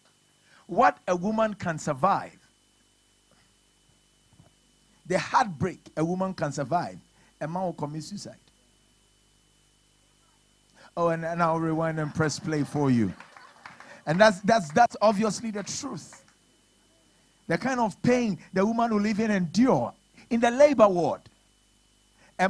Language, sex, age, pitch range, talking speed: English, male, 50-69, 160-220 Hz, 130 wpm